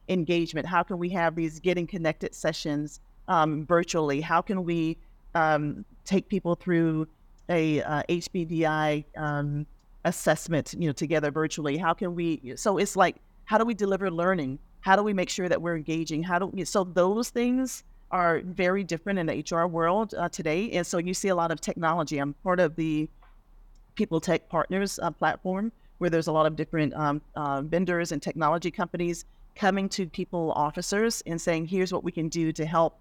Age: 40-59